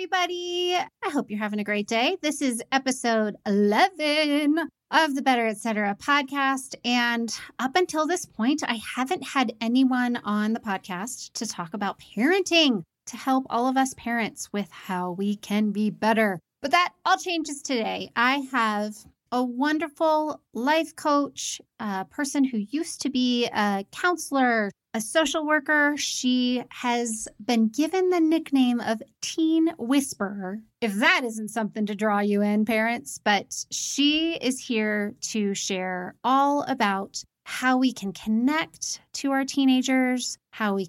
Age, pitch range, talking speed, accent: 30-49, 210-290 Hz, 150 wpm, American